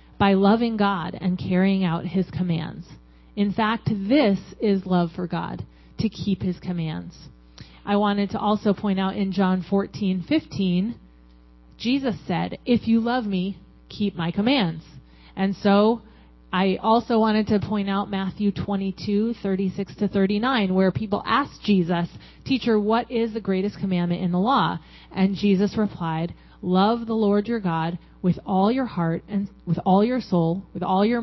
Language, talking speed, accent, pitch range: English, 160 wpm, American, 180-215 Hz